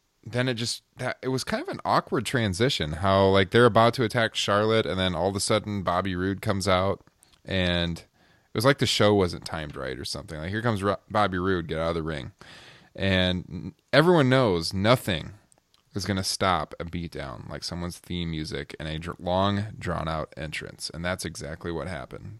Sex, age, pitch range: male, 20-39, 90-120 Hz